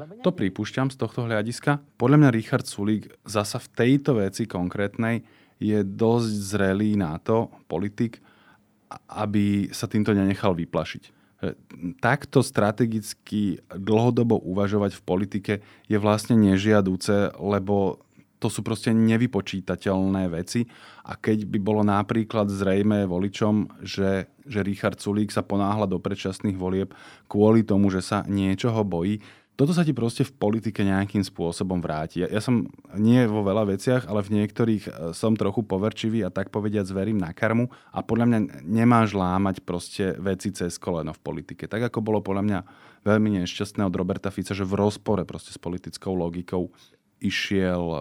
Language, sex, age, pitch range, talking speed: Slovak, male, 20-39, 95-110 Hz, 150 wpm